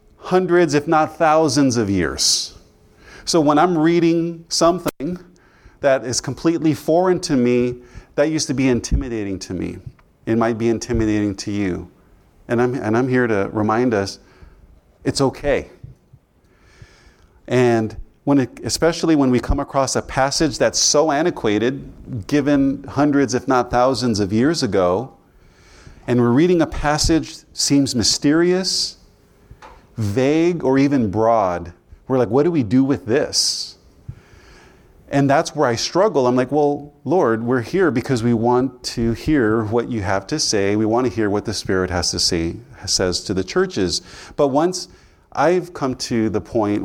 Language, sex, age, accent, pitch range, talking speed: English, male, 40-59, American, 105-145 Hz, 160 wpm